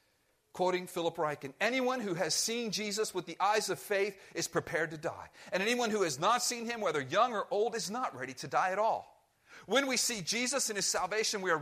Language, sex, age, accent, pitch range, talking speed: English, male, 40-59, American, 175-240 Hz, 225 wpm